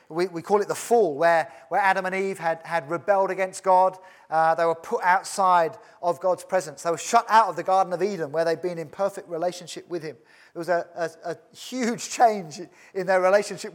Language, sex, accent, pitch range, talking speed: English, male, British, 170-205 Hz, 220 wpm